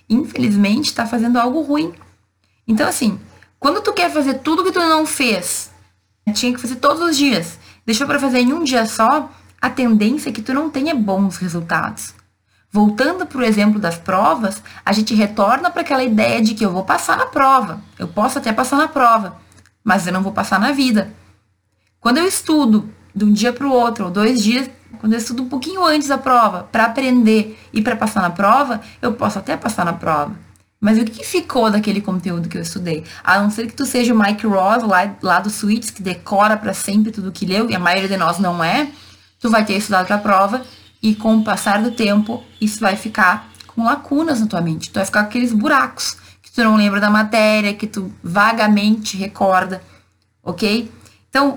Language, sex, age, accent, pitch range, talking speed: Portuguese, female, 20-39, Brazilian, 195-255 Hz, 205 wpm